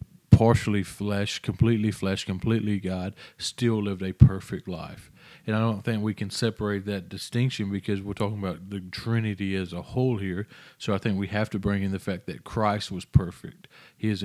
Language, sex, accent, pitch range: English, male, American, 95-110 Hz